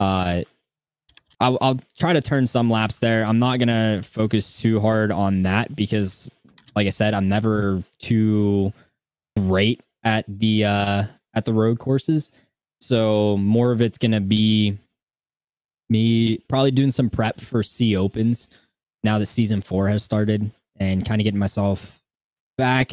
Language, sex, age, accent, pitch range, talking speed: English, male, 10-29, American, 95-115 Hz, 150 wpm